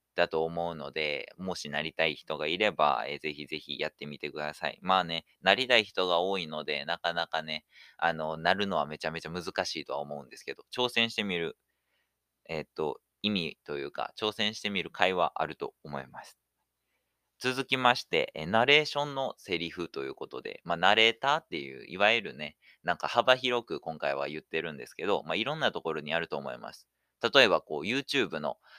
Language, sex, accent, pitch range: Japanese, male, native, 75-115 Hz